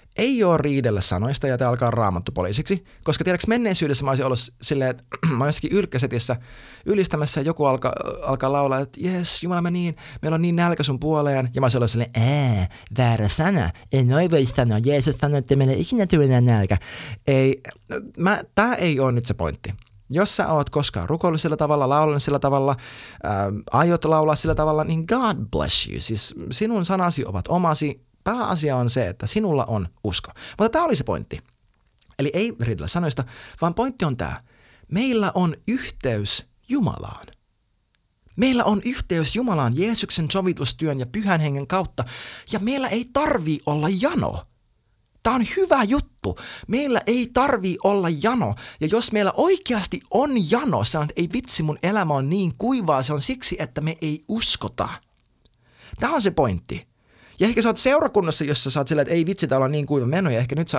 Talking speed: 180 wpm